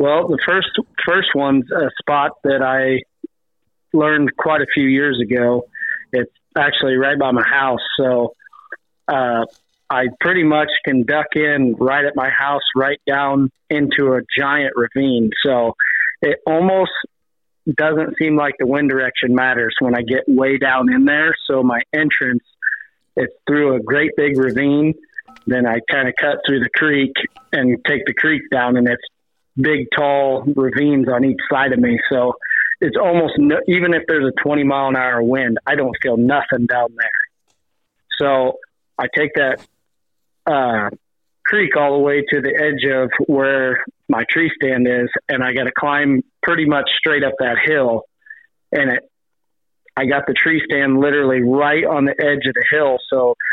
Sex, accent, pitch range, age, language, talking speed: male, American, 130-145 Hz, 40-59, English, 170 wpm